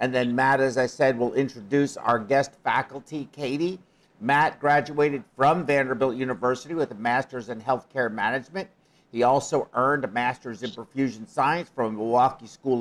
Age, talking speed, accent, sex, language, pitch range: 50-69, 160 wpm, American, male, English, 115-140 Hz